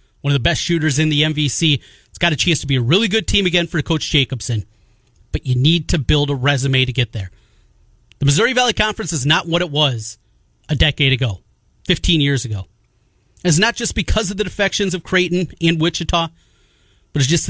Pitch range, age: 130-170 Hz, 30-49